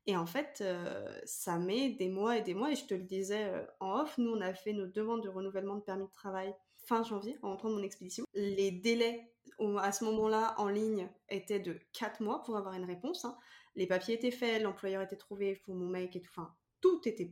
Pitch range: 195-240 Hz